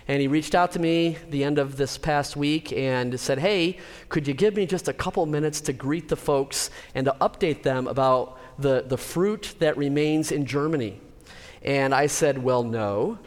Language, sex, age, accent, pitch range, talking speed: English, male, 40-59, American, 130-155 Hz, 200 wpm